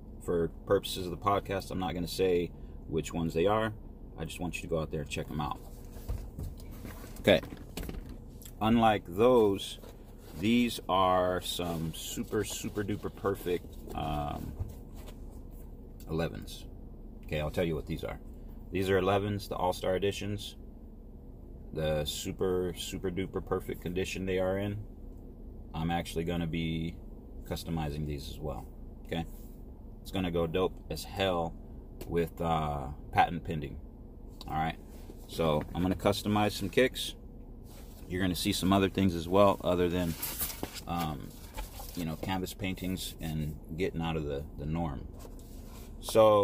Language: English